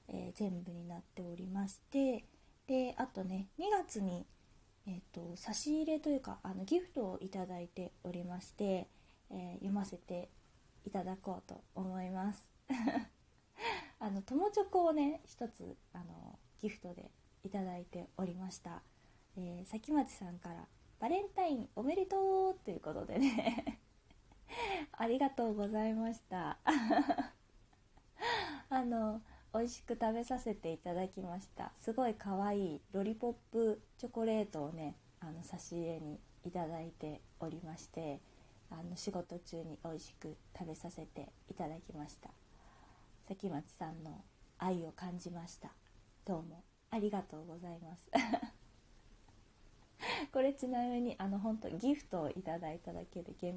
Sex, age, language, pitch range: female, 20-39, Japanese, 170-235 Hz